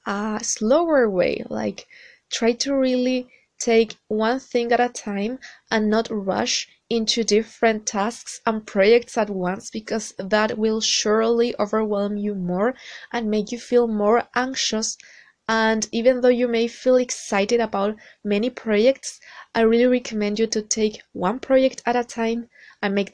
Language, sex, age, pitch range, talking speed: English, female, 20-39, 215-245 Hz, 155 wpm